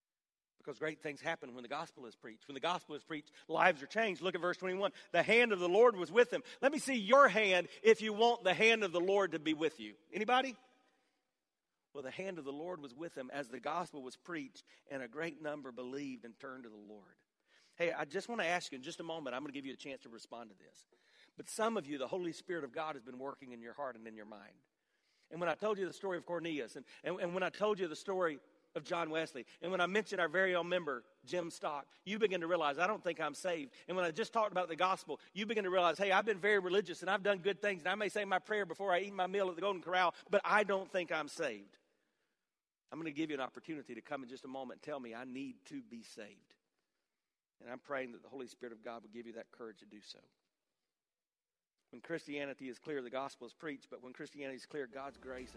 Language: English